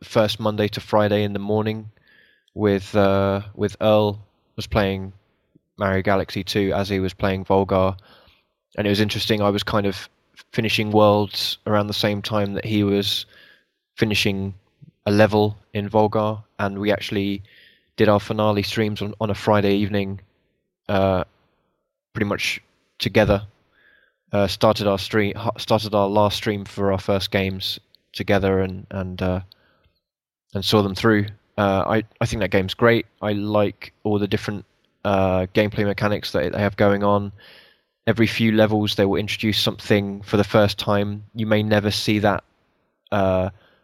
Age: 20-39